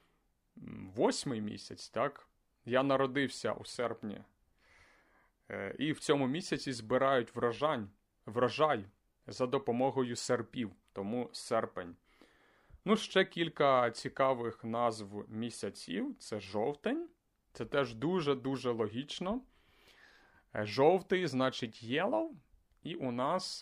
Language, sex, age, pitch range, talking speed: Ukrainian, male, 30-49, 115-155 Hz, 90 wpm